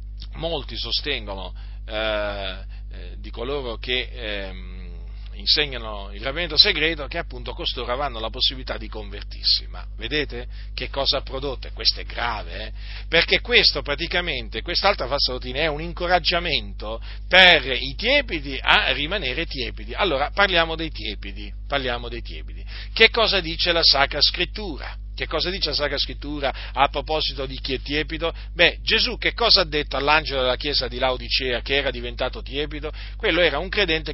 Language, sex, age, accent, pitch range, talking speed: Italian, male, 40-59, native, 110-160 Hz, 155 wpm